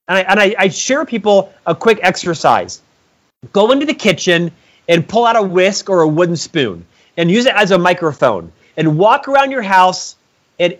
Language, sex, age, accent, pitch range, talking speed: English, male, 40-59, American, 185-245 Hz, 190 wpm